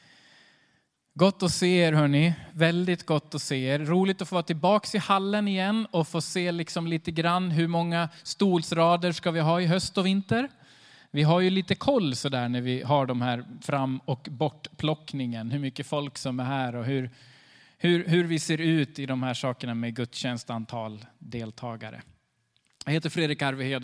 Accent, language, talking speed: native, Swedish, 185 wpm